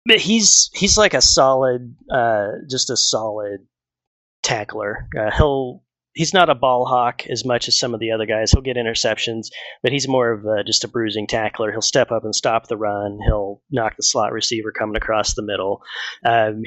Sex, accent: male, American